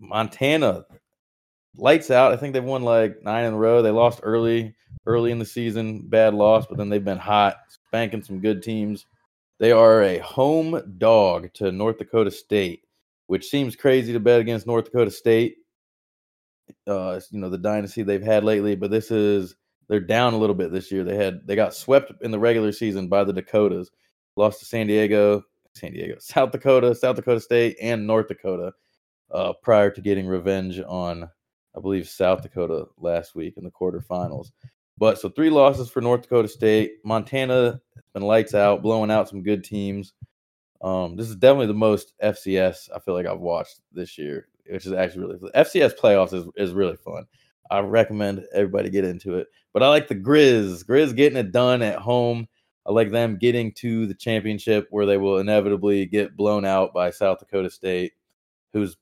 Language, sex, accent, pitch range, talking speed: English, male, American, 100-115 Hz, 190 wpm